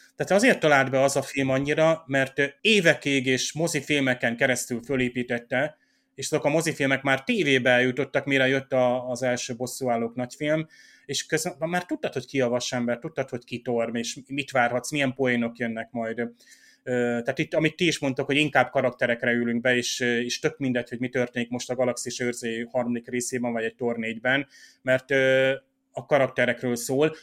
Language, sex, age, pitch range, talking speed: Hungarian, male, 30-49, 125-140 Hz, 170 wpm